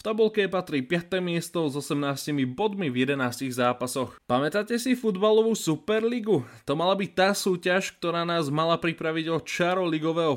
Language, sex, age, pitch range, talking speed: Slovak, male, 20-39, 140-190 Hz, 155 wpm